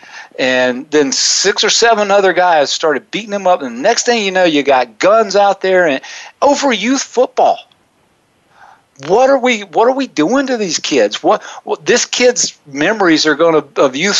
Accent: American